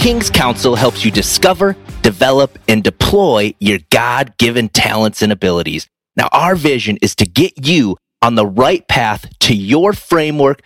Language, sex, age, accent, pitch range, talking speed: English, male, 30-49, American, 110-165 Hz, 150 wpm